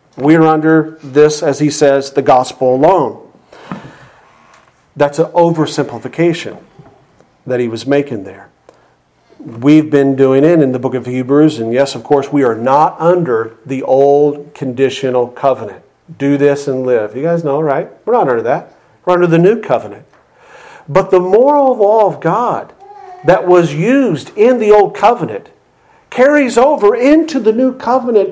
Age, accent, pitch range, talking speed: 50-69, American, 140-235 Hz, 160 wpm